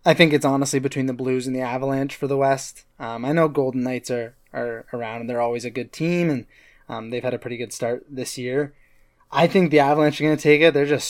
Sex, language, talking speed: male, English, 260 wpm